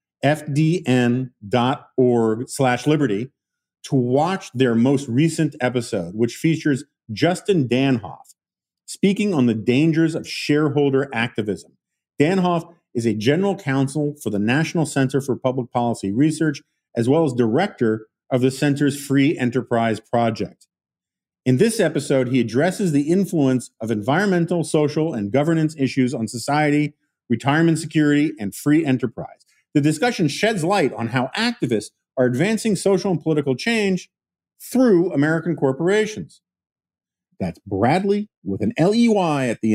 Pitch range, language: 115-155 Hz, English